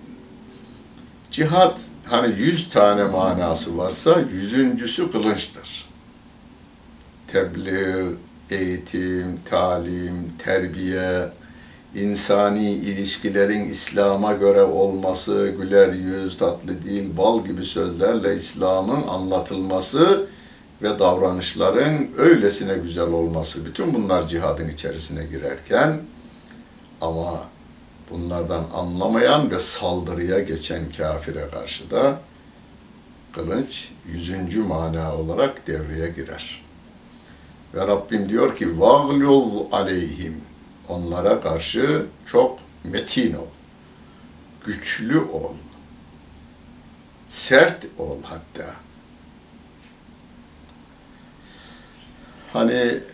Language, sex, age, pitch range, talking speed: Turkish, male, 60-79, 85-100 Hz, 75 wpm